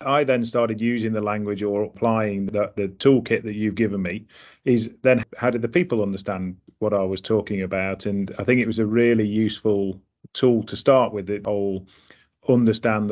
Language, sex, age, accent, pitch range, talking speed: English, male, 30-49, British, 100-115 Hz, 190 wpm